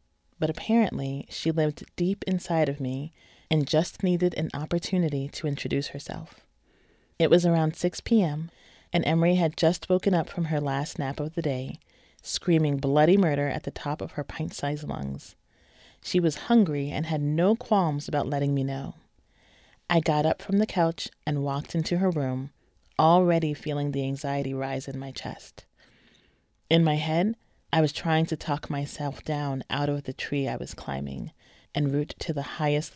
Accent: American